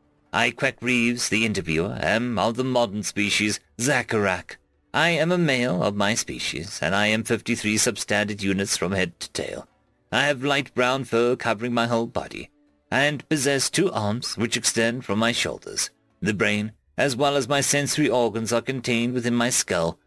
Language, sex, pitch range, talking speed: English, male, 110-140 Hz, 175 wpm